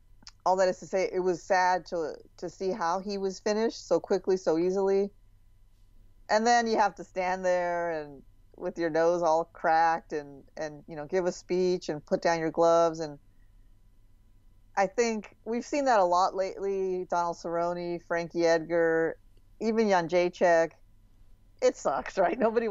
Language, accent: English, American